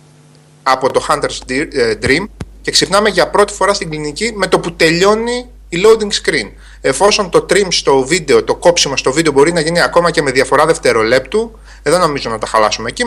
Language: Greek